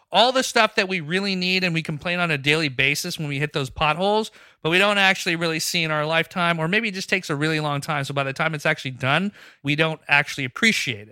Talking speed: 260 wpm